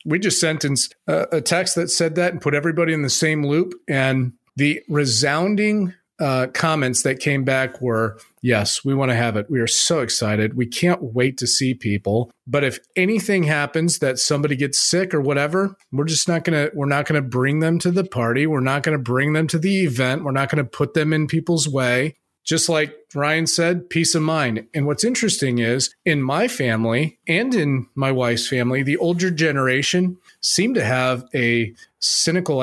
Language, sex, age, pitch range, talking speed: English, male, 40-59, 130-160 Hz, 200 wpm